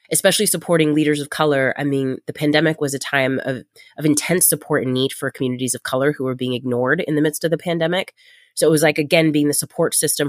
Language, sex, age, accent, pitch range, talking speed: English, female, 30-49, American, 140-170 Hz, 240 wpm